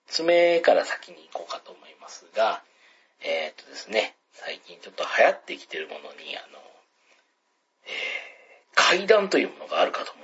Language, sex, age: Japanese, male, 40-59